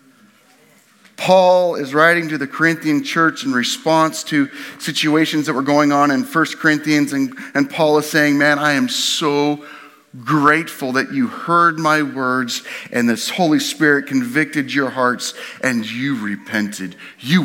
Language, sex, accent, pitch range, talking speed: English, male, American, 125-175 Hz, 150 wpm